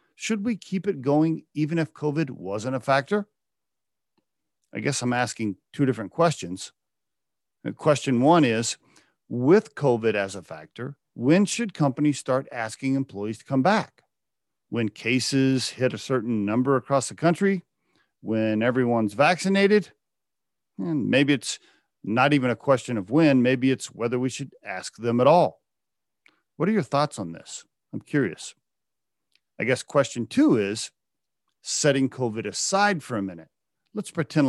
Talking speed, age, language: 150 wpm, 50-69, English